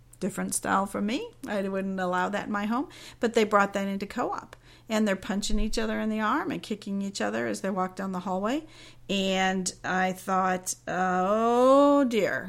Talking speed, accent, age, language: 190 wpm, American, 50-69, English